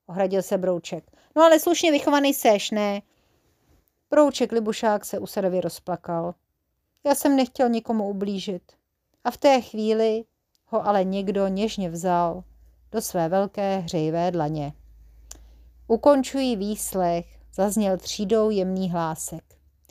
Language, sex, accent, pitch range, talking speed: Czech, female, native, 175-250 Hz, 120 wpm